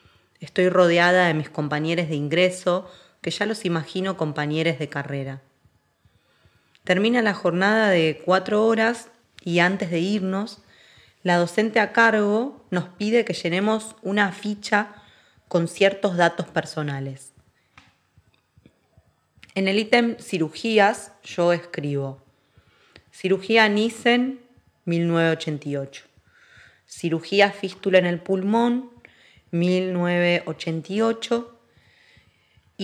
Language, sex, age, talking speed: Spanish, female, 20-39, 95 wpm